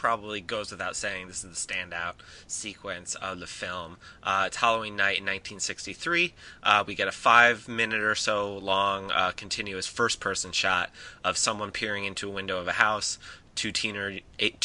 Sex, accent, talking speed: male, American, 175 wpm